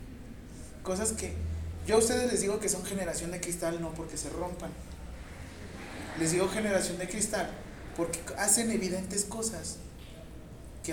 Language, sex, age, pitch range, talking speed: Spanish, male, 30-49, 140-180 Hz, 145 wpm